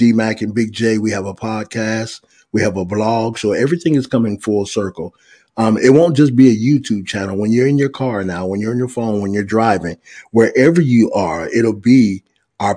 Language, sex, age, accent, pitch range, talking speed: English, male, 30-49, American, 105-130 Hz, 215 wpm